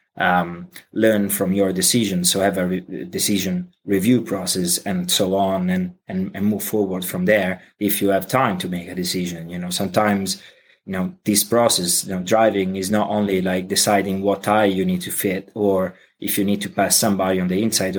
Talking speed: 205 wpm